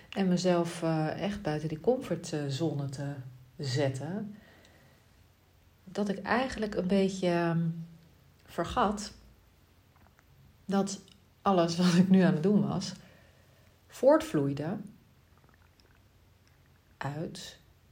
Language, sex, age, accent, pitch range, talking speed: Dutch, female, 40-59, Dutch, 135-200 Hz, 85 wpm